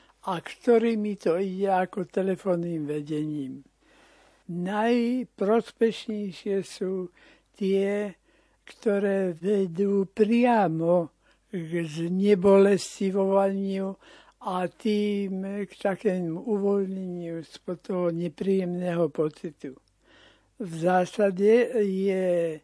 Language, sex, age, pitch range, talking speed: Slovak, male, 60-79, 175-205 Hz, 70 wpm